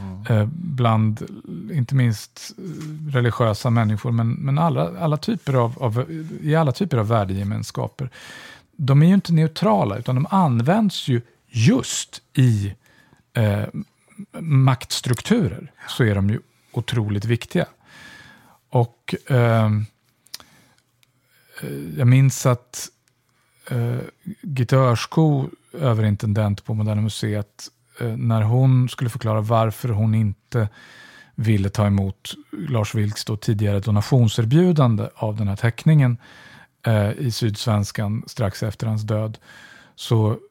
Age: 50-69